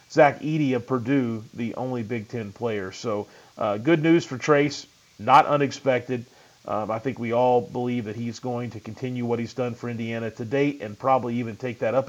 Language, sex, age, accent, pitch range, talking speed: English, male, 40-59, American, 115-135 Hz, 205 wpm